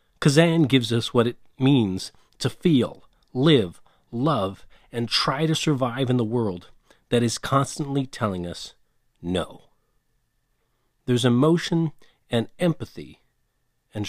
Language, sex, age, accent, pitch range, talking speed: English, male, 40-59, American, 105-145 Hz, 120 wpm